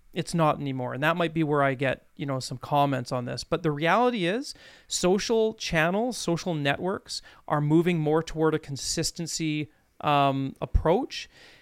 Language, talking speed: English, 165 wpm